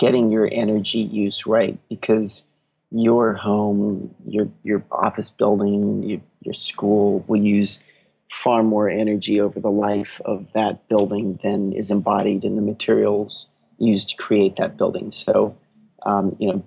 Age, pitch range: 40-59, 100-110 Hz